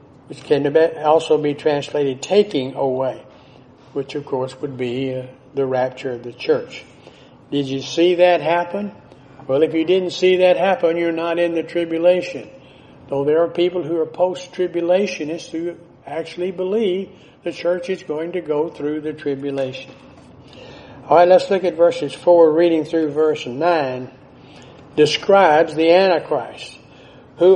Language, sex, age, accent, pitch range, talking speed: English, male, 60-79, American, 140-175 Hz, 150 wpm